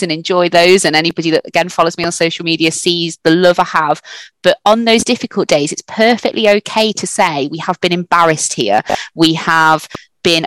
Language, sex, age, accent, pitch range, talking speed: English, female, 20-39, British, 160-185 Hz, 200 wpm